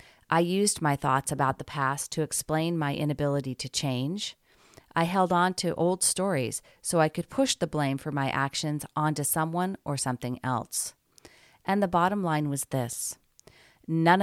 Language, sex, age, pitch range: English, female, 40-59, 135-170 Hz